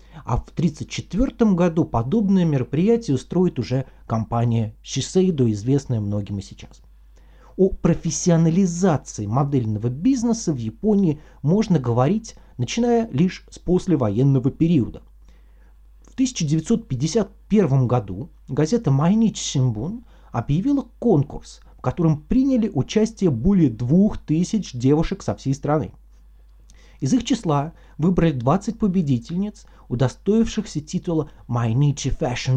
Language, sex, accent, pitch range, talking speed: Russian, male, native, 120-185 Hz, 100 wpm